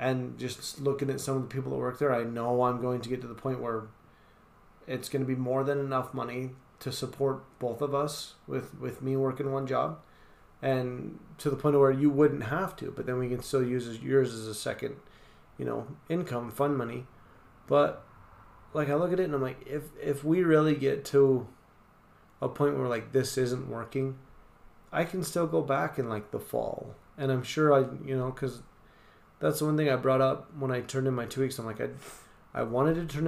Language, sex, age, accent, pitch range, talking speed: English, male, 30-49, American, 120-140 Hz, 225 wpm